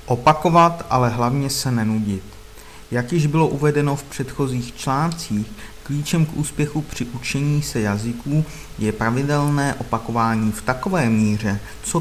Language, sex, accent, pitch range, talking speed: Czech, male, native, 110-140 Hz, 130 wpm